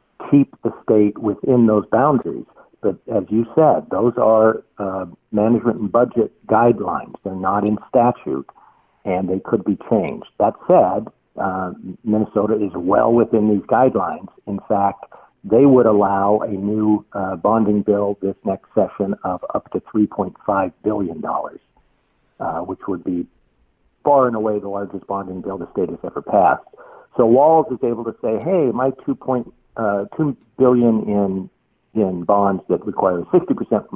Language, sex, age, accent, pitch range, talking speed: English, male, 60-79, American, 100-115 Hz, 155 wpm